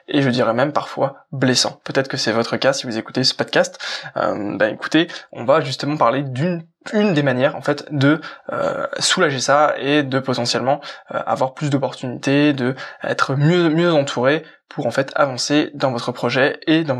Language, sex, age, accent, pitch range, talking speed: French, male, 20-39, French, 130-155 Hz, 190 wpm